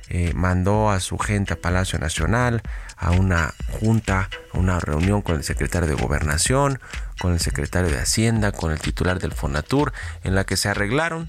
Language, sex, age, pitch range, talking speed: Spanish, male, 30-49, 85-110 Hz, 180 wpm